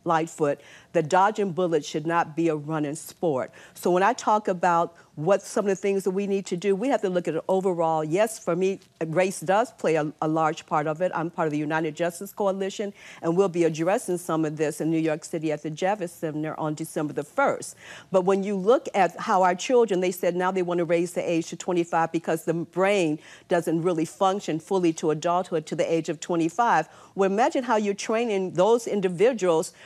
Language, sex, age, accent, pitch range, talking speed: English, female, 50-69, American, 170-200 Hz, 220 wpm